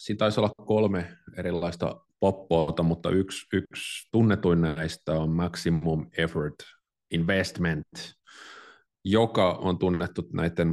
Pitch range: 80-95 Hz